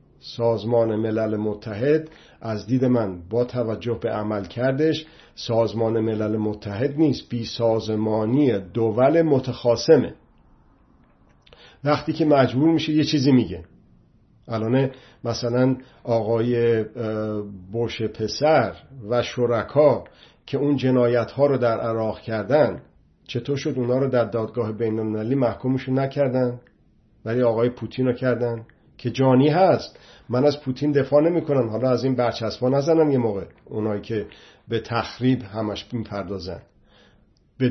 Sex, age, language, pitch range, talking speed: male, 50-69, Persian, 110-130 Hz, 125 wpm